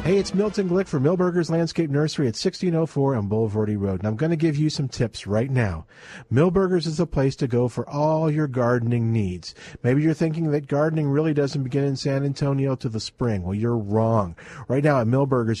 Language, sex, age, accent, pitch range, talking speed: English, male, 50-69, American, 125-185 Hz, 210 wpm